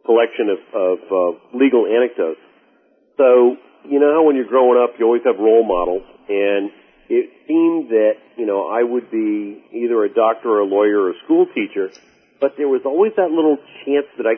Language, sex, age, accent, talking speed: English, male, 50-69, American, 195 wpm